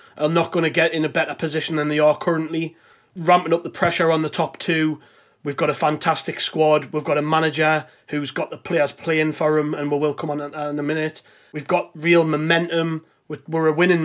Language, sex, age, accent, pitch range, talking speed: English, male, 30-49, British, 150-170 Hz, 220 wpm